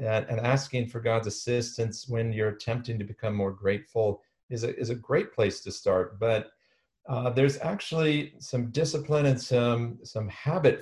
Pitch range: 110-130 Hz